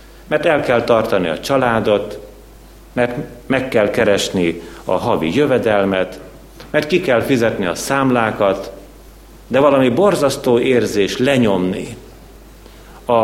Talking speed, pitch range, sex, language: 115 wpm, 95-130 Hz, male, Hungarian